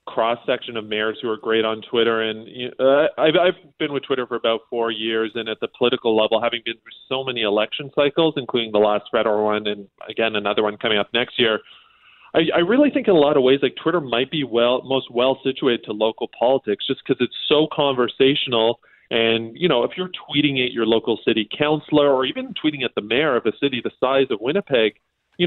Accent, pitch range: American, 110-135 Hz